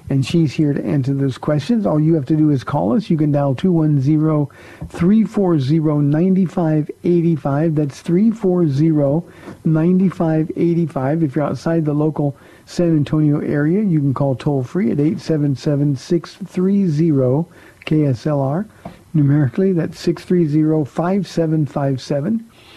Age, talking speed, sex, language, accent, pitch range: 50-69, 100 wpm, male, English, American, 140-170 Hz